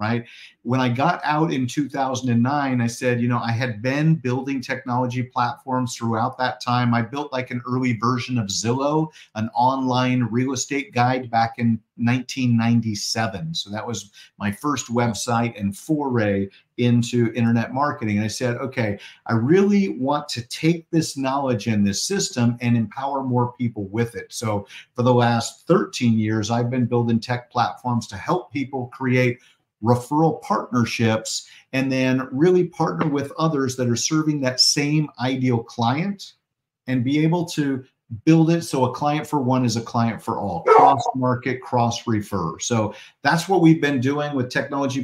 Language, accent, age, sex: English, American, 50-69, male